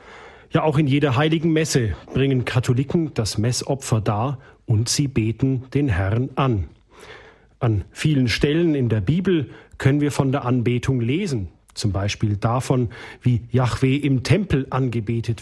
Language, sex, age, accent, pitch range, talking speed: German, male, 40-59, German, 115-145 Hz, 145 wpm